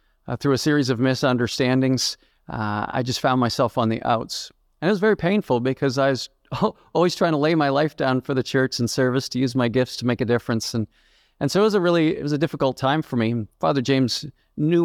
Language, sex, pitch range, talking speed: English, male, 120-145 Hz, 240 wpm